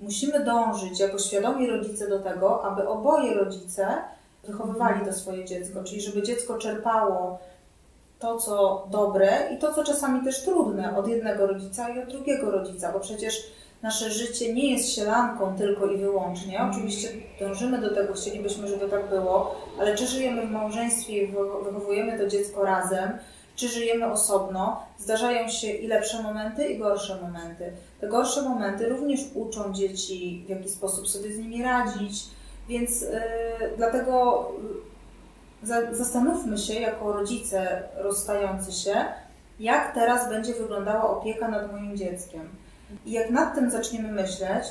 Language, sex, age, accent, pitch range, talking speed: Polish, female, 30-49, native, 195-230 Hz, 150 wpm